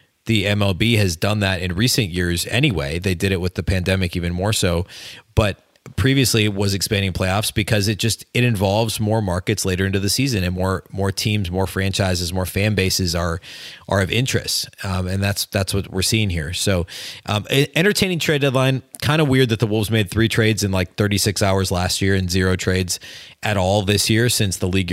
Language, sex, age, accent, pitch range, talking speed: English, male, 30-49, American, 95-110 Hz, 205 wpm